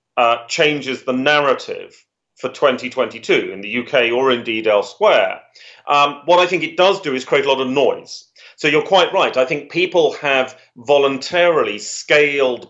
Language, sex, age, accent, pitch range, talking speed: English, male, 40-59, British, 125-185 Hz, 165 wpm